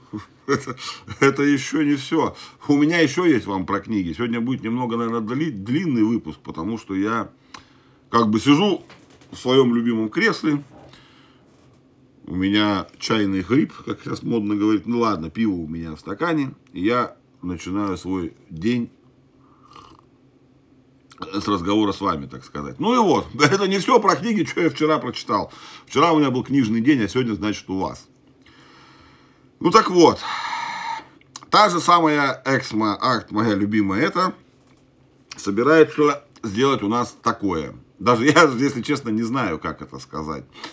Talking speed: 145 wpm